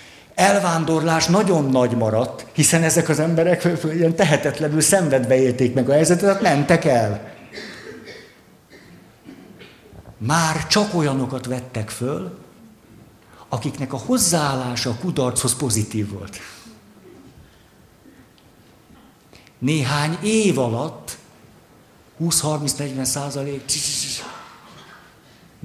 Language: Hungarian